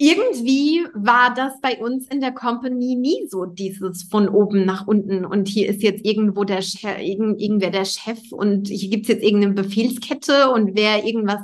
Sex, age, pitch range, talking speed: female, 30-49, 215-305 Hz, 190 wpm